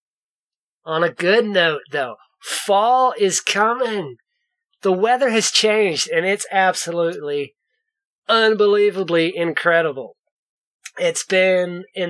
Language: English